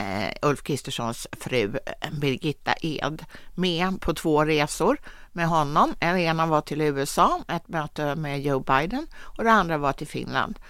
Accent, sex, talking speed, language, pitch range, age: Swedish, female, 155 wpm, English, 135-185 Hz, 60-79